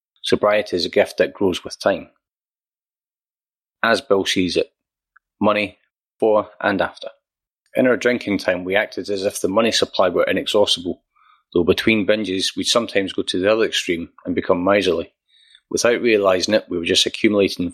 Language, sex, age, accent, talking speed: English, male, 30-49, British, 165 wpm